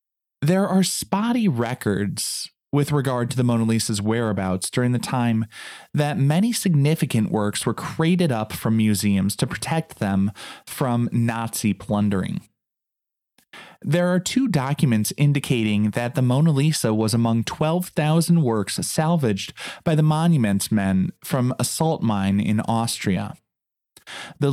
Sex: male